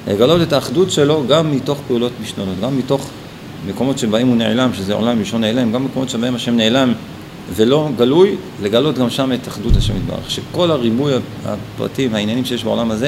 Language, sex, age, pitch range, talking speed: Hebrew, male, 40-59, 110-140 Hz, 180 wpm